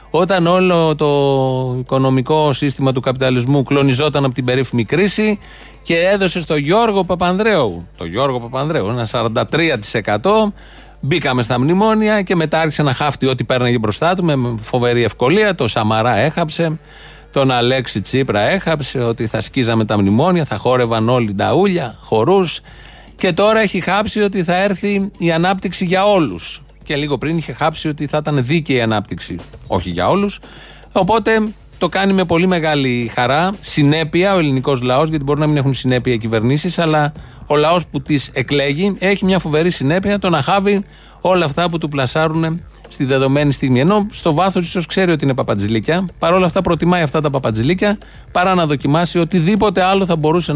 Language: Greek